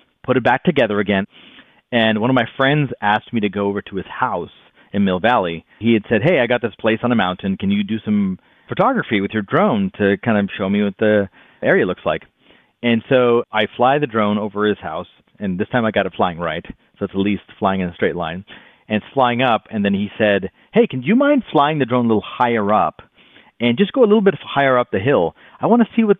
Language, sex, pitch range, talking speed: English, male, 95-130 Hz, 250 wpm